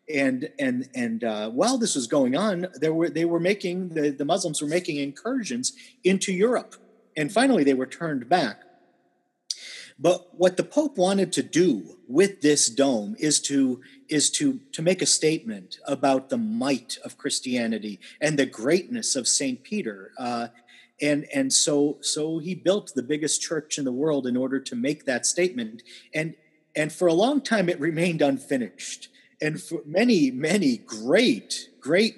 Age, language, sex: 40-59, English, male